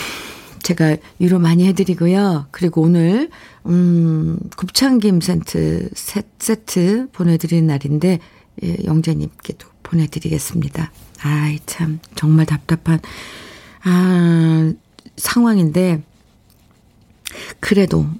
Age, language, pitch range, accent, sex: 50-69, Korean, 150-195 Hz, native, female